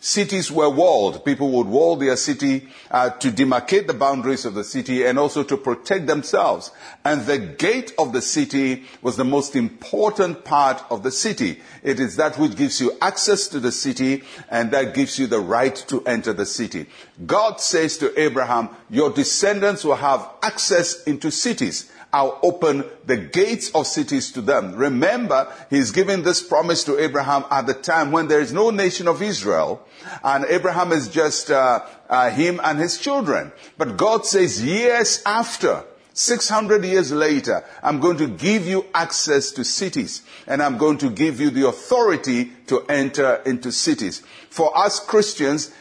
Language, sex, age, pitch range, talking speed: English, male, 60-79, 140-205 Hz, 175 wpm